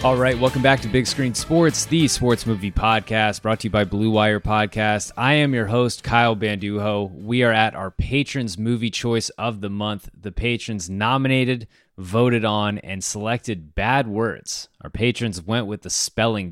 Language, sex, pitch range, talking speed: English, male, 100-120 Hz, 180 wpm